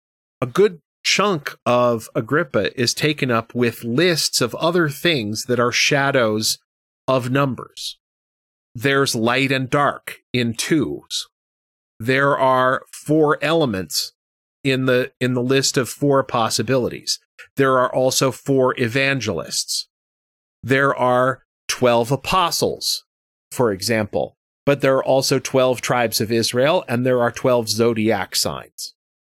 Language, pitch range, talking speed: English, 115-140 Hz, 125 wpm